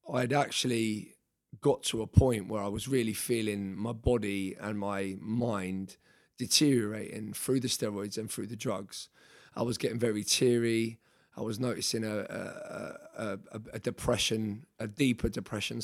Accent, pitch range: British, 110-125 Hz